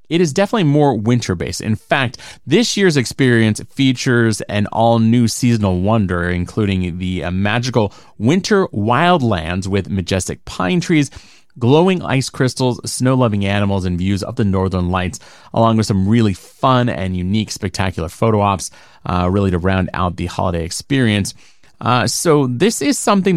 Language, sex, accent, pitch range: English, male, American, 95-140 Hz